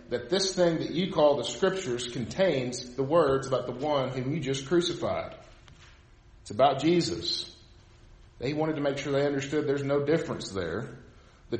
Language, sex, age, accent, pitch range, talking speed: English, male, 40-59, American, 105-135 Hz, 170 wpm